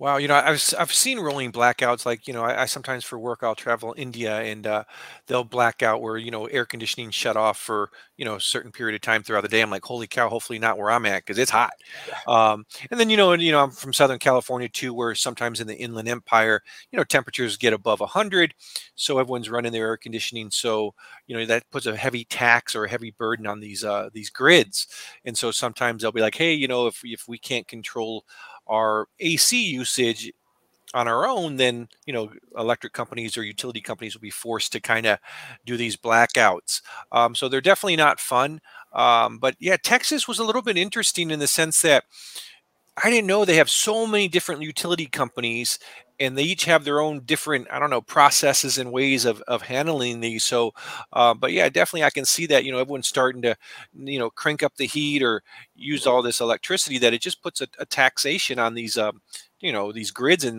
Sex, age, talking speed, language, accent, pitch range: male, 40-59, 220 wpm, English, American, 115-140 Hz